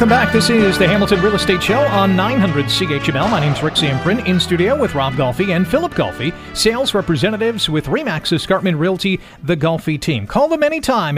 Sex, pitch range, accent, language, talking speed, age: male, 150-200 Hz, American, English, 200 wpm, 40-59